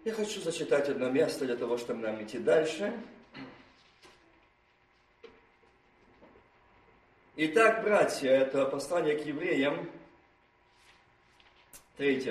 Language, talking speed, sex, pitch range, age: Russian, 90 wpm, male, 160-225 Hz, 50-69